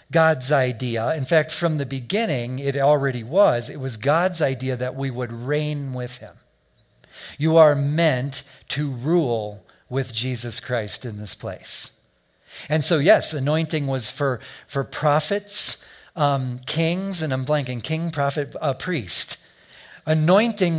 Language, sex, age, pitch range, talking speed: English, male, 50-69, 130-165 Hz, 140 wpm